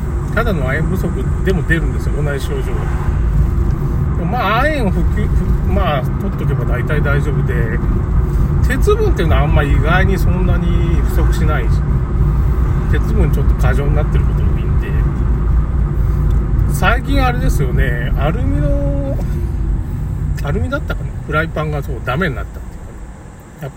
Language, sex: Japanese, male